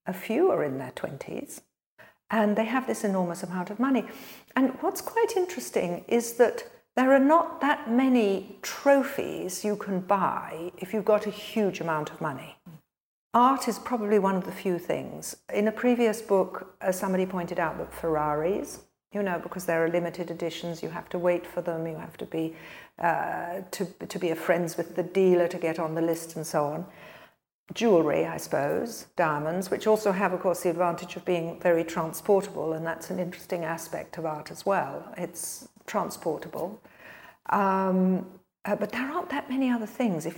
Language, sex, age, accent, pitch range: Chinese, female, 50-69, British, 170-215 Hz